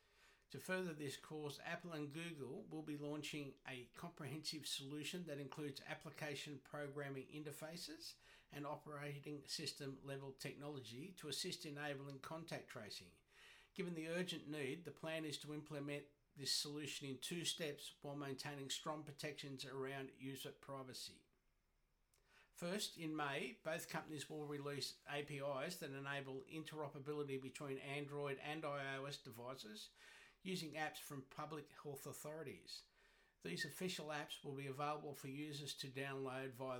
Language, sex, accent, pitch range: English, male, Australian, 135-155 Hz